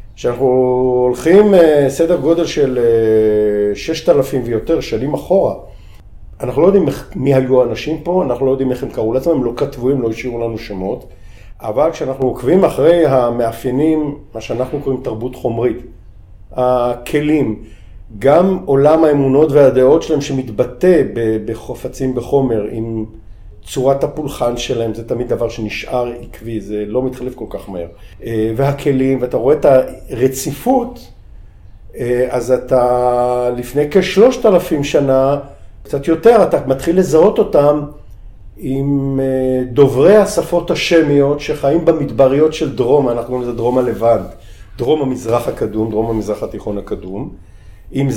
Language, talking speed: Hebrew, 130 wpm